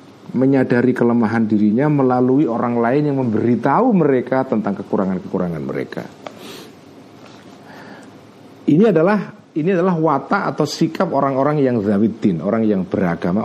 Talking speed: 110 wpm